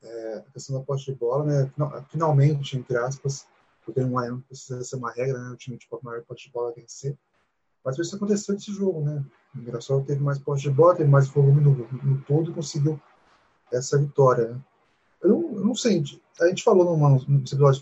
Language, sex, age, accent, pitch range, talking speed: Portuguese, male, 20-39, Brazilian, 130-170 Hz, 200 wpm